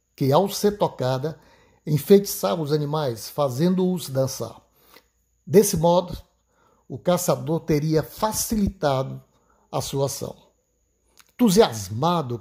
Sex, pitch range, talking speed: male, 140-180 Hz, 90 wpm